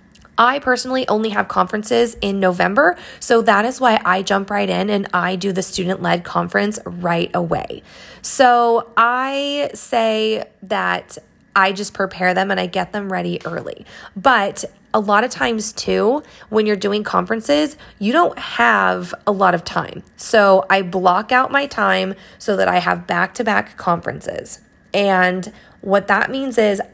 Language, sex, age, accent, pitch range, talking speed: English, female, 20-39, American, 190-230 Hz, 160 wpm